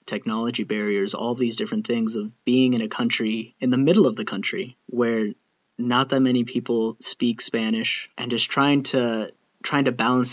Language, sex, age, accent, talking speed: English, male, 20-39, American, 180 wpm